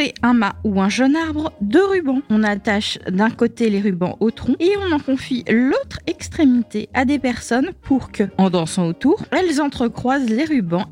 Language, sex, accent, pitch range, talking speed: French, female, French, 215-285 Hz, 185 wpm